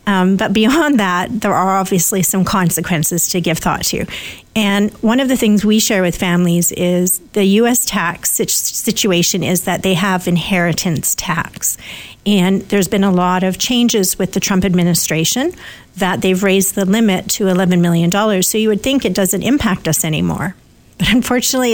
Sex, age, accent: female, 40-59, American